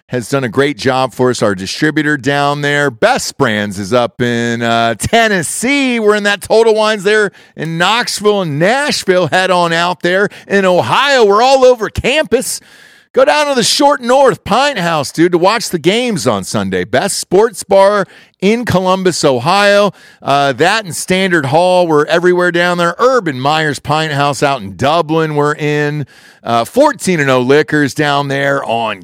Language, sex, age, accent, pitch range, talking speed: English, male, 40-59, American, 145-205 Hz, 175 wpm